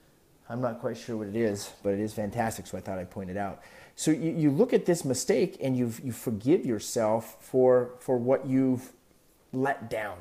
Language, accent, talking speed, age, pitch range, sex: English, American, 210 wpm, 30-49, 110-145 Hz, male